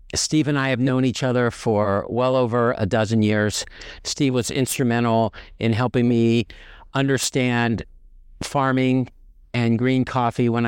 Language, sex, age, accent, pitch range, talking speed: English, male, 50-69, American, 100-125 Hz, 140 wpm